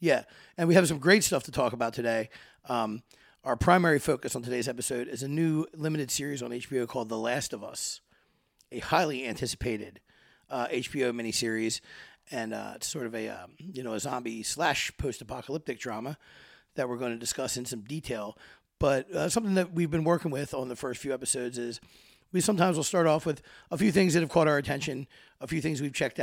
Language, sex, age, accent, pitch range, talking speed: English, male, 30-49, American, 125-165 Hz, 210 wpm